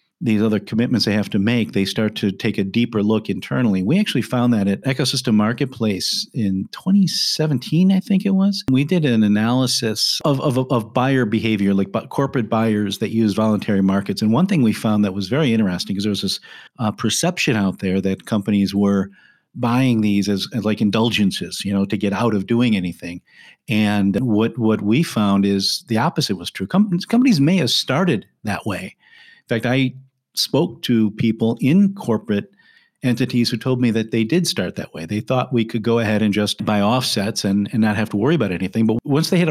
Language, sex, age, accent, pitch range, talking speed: English, male, 50-69, American, 105-130 Hz, 205 wpm